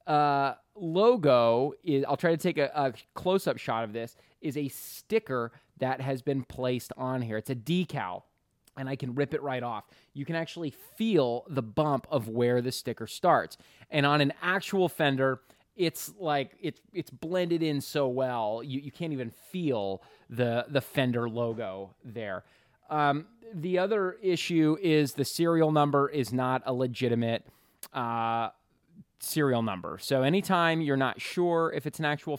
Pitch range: 125-155 Hz